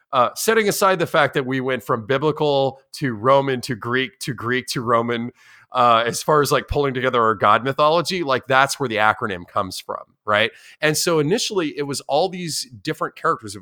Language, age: English, 30-49